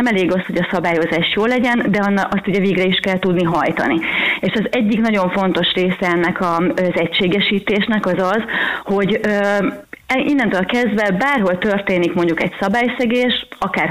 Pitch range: 175-215 Hz